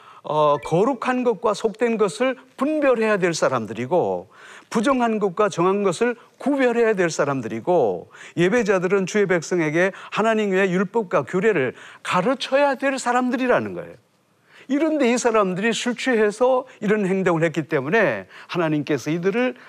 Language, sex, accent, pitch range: Korean, male, native, 150-235 Hz